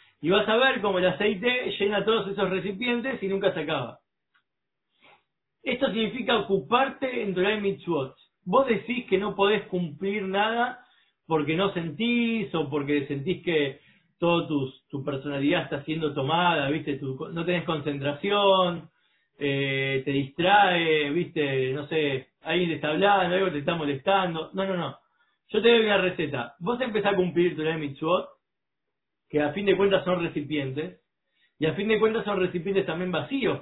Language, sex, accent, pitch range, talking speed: Spanish, male, Argentinian, 150-205 Hz, 160 wpm